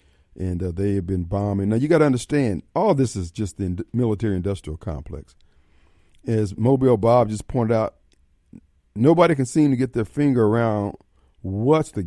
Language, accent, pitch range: Japanese, American, 95-130 Hz